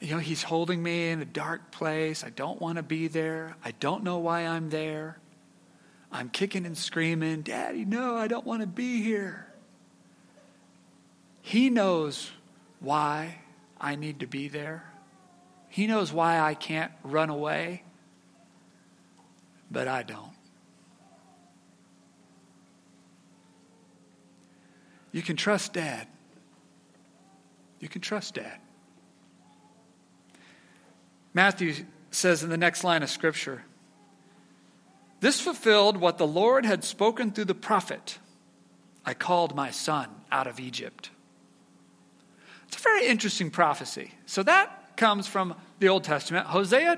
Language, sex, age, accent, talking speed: English, male, 50-69, American, 125 wpm